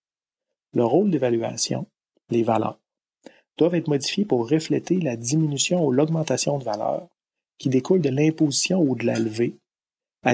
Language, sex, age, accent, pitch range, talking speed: French, male, 40-59, Canadian, 120-155 Hz, 145 wpm